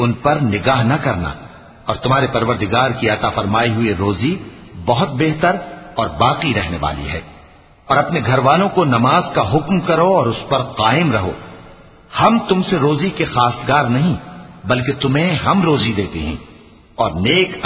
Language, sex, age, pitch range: Bengali, male, 50-69, 110-160 Hz